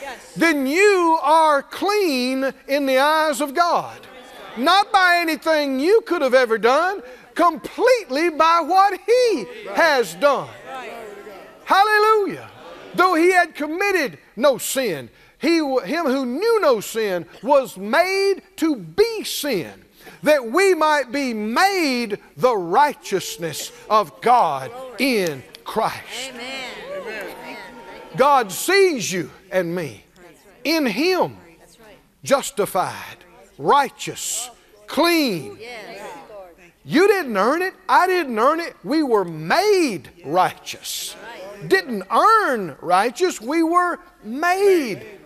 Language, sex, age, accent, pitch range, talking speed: English, male, 50-69, American, 245-370 Hz, 105 wpm